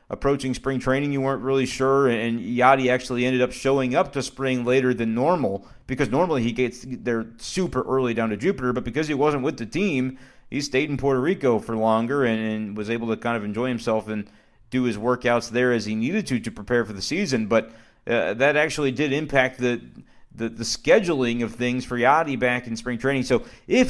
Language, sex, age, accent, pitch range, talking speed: English, male, 30-49, American, 115-130 Hz, 215 wpm